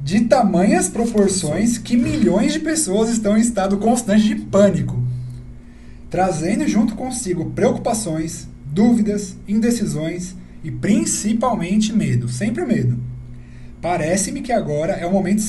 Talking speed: 115 wpm